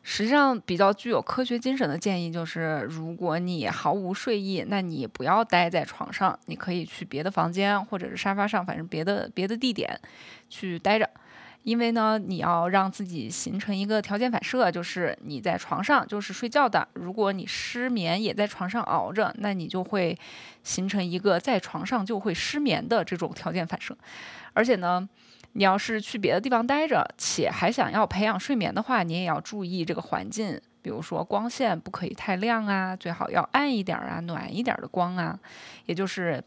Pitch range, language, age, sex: 180-235 Hz, Chinese, 20-39, female